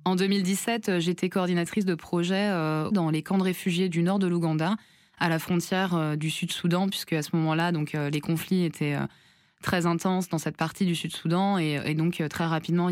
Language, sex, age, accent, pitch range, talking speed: French, female, 20-39, French, 155-175 Hz, 185 wpm